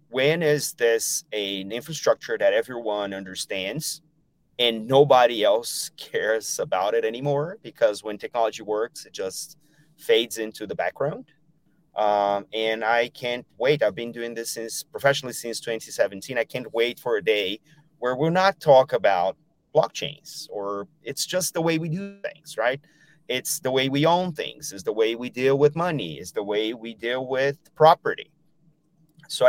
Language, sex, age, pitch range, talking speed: English, male, 30-49, 110-155 Hz, 165 wpm